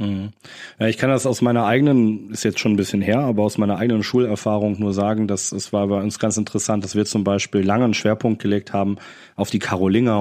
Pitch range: 100-115 Hz